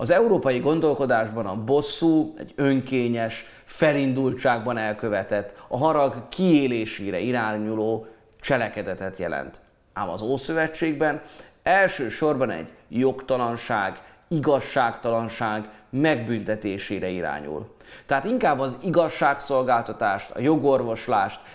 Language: Hungarian